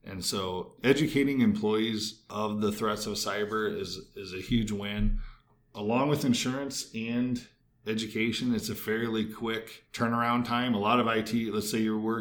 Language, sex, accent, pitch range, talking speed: English, male, American, 100-115 Hz, 160 wpm